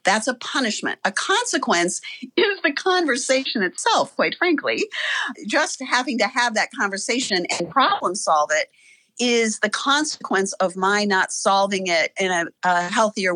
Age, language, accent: 50-69, English, American